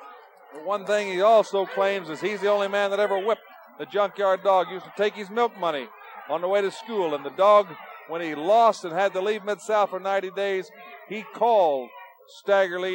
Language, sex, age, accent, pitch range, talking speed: English, male, 50-69, American, 190-215 Hz, 220 wpm